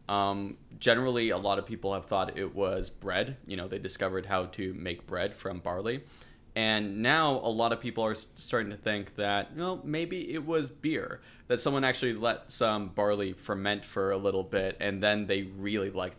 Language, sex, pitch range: English, male, 95-115 Hz